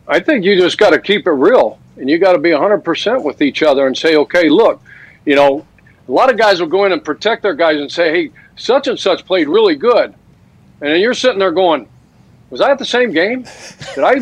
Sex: male